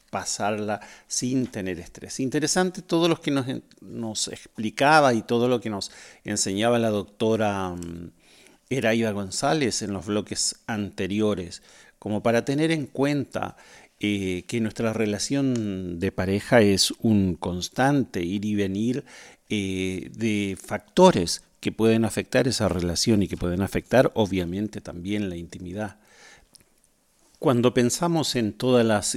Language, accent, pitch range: Spanish, Argentinian, 95-120 Hz